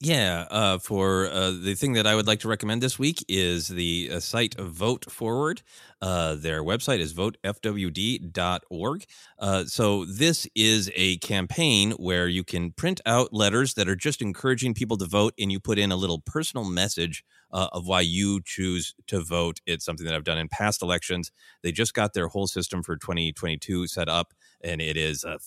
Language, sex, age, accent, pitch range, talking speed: English, male, 30-49, American, 85-115 Hz, 190 wpm